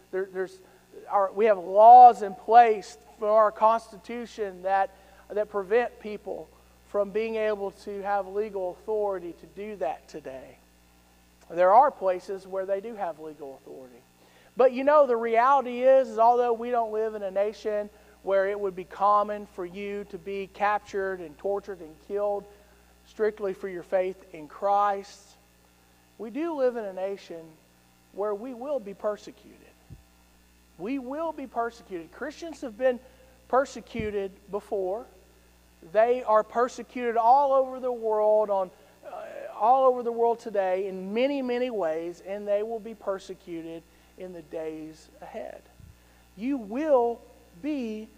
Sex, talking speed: male, 150 wpm